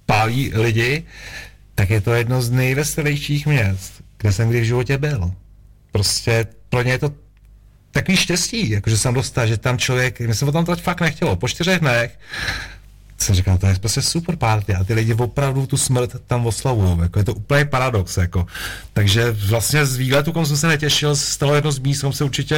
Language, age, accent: Czech, 40-59, native